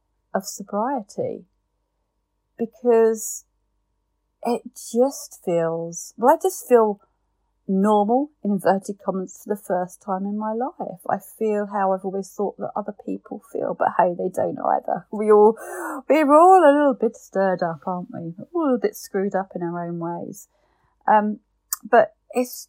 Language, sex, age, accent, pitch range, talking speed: English, female, 40-59, British, 170-220 Hz, 160 wpm